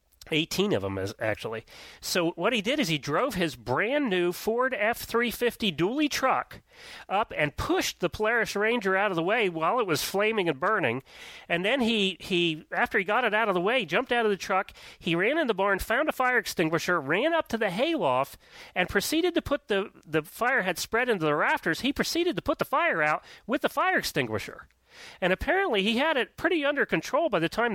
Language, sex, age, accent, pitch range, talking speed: English, male, 40-59, American, 155-230 Hz, 215 wpm